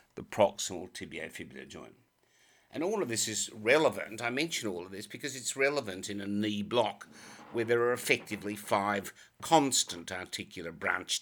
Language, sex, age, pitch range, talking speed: English, male, 60-79, 95-115 Hz, 160 wpm